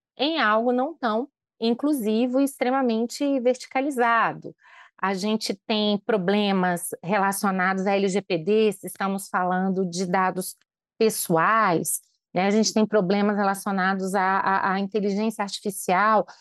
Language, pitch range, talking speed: Portuguese, 190-225 Hz, 110 wpm